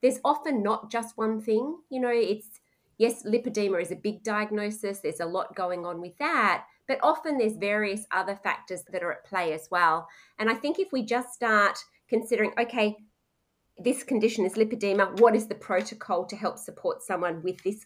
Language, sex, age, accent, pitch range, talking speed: English, female, 30-49, Australian, 185-235 Hz, 190 wpm